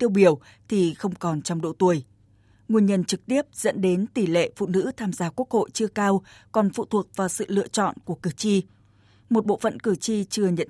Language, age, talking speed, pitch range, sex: Vietnamese, 20-39, 230 wpm, 175-220 Hz, female